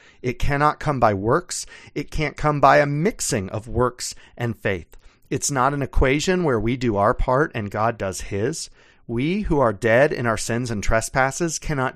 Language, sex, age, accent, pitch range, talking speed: English, male, 40-59, American, 110-150 Hz, 190 wpm